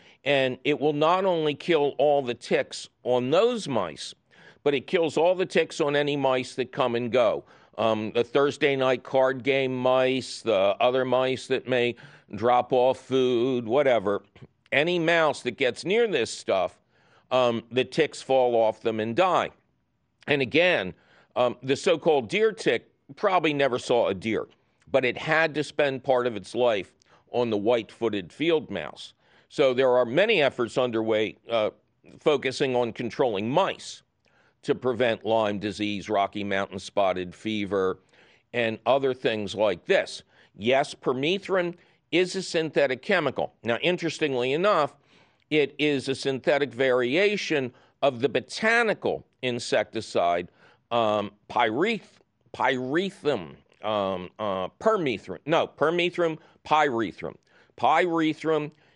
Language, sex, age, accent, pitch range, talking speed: English, male, 50-69, American, 115-150 Hz, 135 wpm